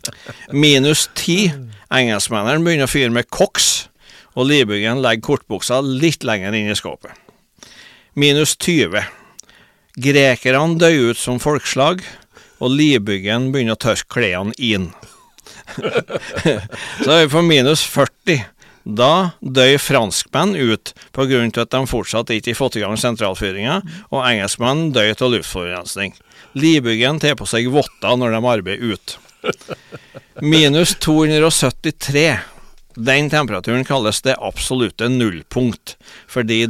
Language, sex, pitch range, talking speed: English, male, 115-145 Hz, 120 wpm